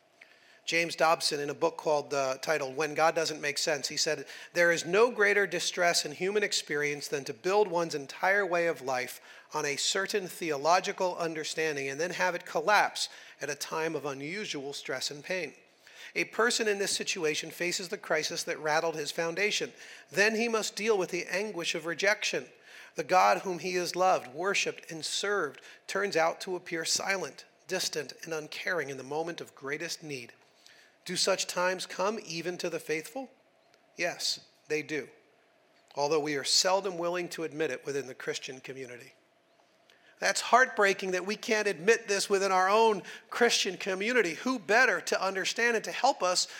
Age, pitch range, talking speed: 40-59, 155-205 Hz, 175 wpm